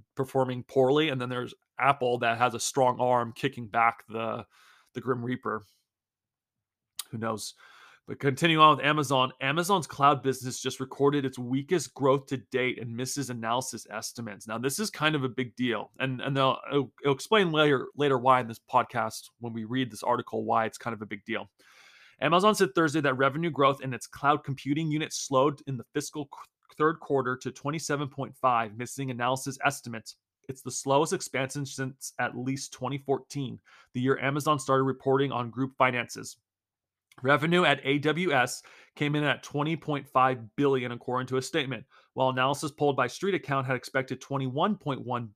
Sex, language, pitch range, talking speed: male, English, 125-145 Hz, 170 wpm